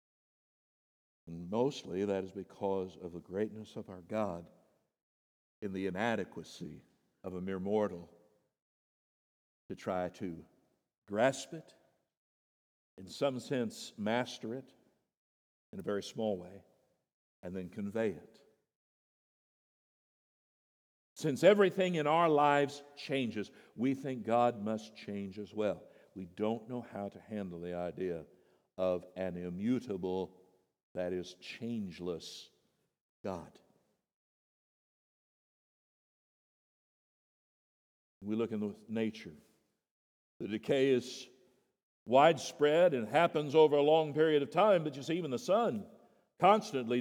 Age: 60-79